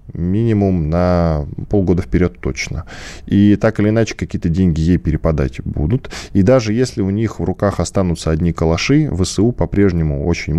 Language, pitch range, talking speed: Russian, 80-105 Hz, 155 wpm